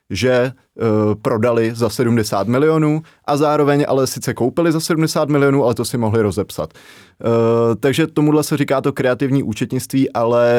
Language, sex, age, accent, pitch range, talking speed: Czech, male, 20-39, native, 105-125 Hz, 160 wpm